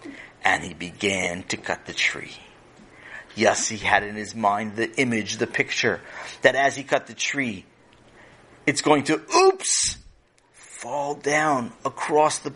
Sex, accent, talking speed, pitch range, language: male, American, 150 wpm, 120-160 Hz, English